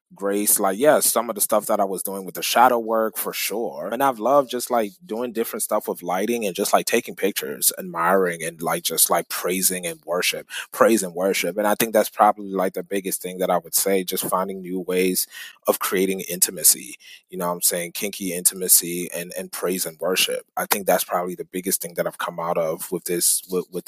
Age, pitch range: 20-39, 95-115 Hz